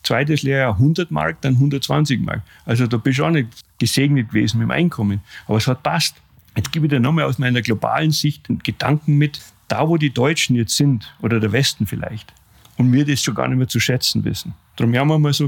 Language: German